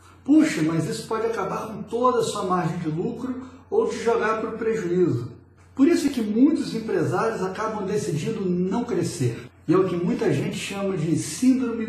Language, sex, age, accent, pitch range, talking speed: Portuguese, male, 70-89, Brazilian, 150-210 Hz, 185 wpm